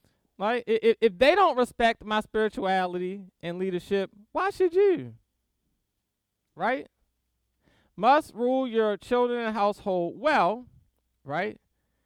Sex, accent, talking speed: male, American, 110 wpm